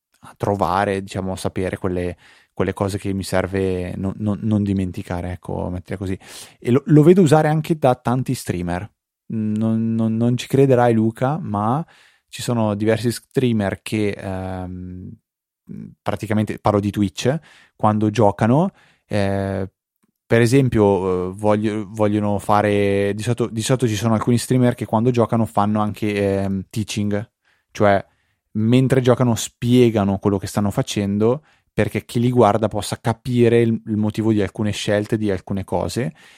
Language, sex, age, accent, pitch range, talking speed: Italian, male, 20-39, native, 100-115 Hz, 145 wpm